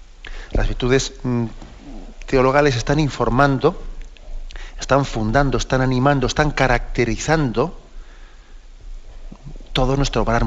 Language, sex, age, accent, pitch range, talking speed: Spanish, male, 40-59, Spanish, 110-145 Hz, 80 wpm